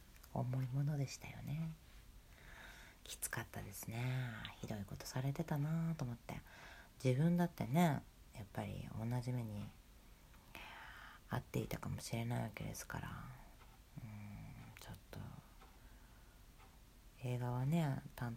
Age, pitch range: 40-59, 115-165 Hz